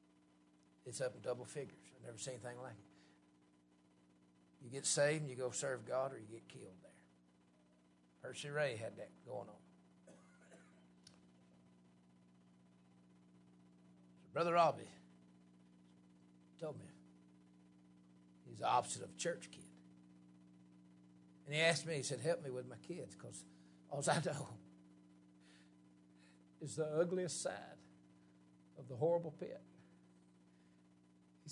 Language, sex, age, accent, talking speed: English, male, 60-79, American, 125 wpm